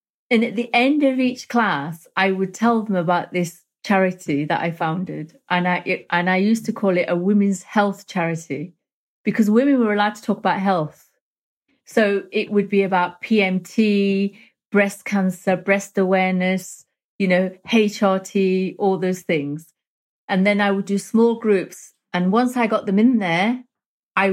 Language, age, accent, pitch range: English, 30-49, British, 175-200 Hz